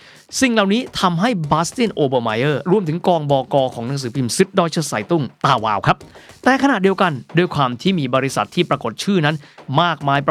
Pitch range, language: 135-190 Hz, Thai